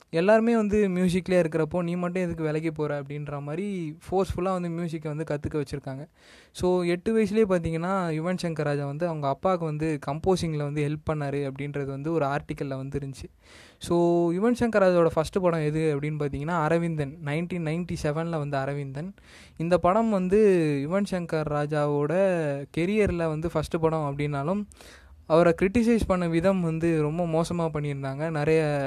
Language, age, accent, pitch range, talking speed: Tamil, 20-39, native, 145-180 Hz, 150 wpm